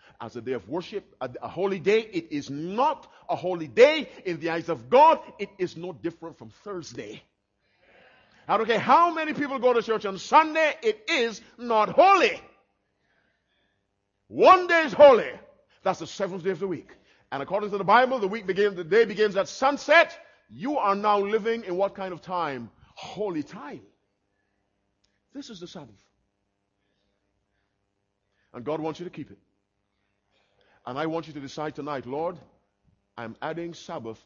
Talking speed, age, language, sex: 170 wpm, 50-69, English, male